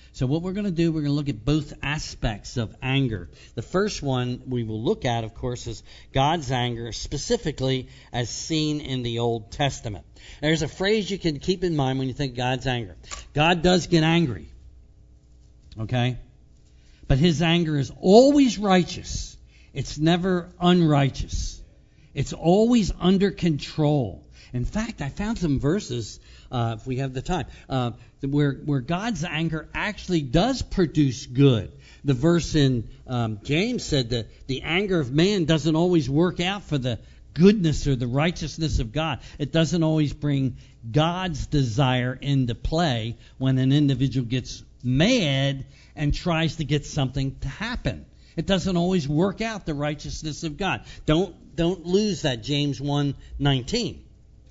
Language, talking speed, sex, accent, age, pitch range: English, 160 wpm, male, American, 60-79, 125-165 Hz